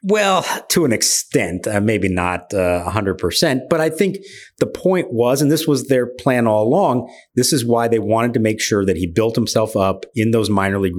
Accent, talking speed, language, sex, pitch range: American, 215 wpm, English, male, 95-120 Hz